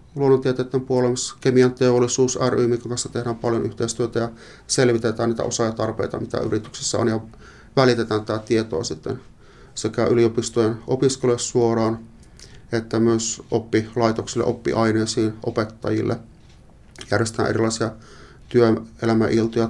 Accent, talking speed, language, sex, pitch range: native, 95 wpm, Finnish, male, 115-120 Hz